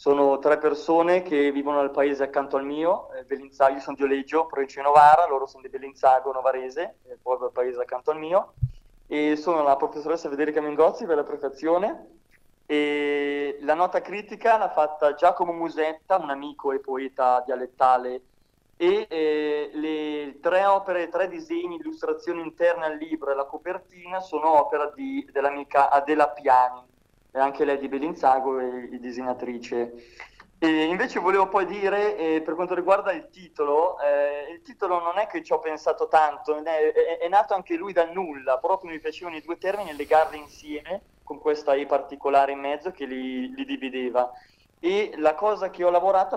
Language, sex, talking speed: Italian, male, 170 wpm